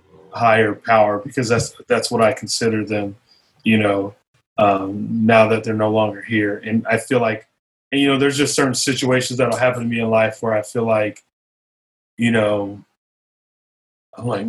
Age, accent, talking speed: 30-49, American, 180 wpm